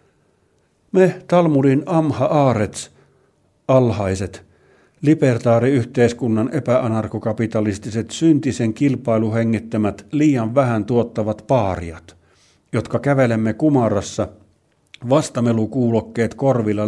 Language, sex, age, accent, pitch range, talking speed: Finnish, male, 50-69, native, 100-125 Hz, 70 wpm